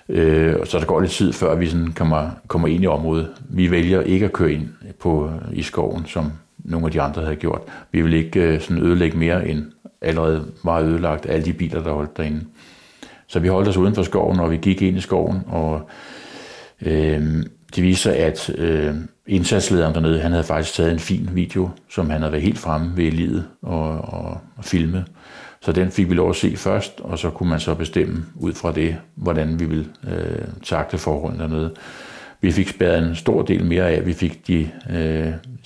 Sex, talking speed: male, 195 wpm